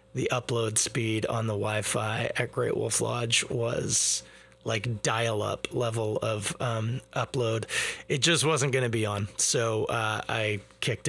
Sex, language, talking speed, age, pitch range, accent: male, English, 150 wpm, 30-49, 110-145 Hz, American